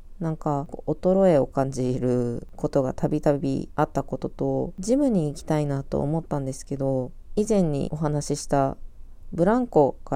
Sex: female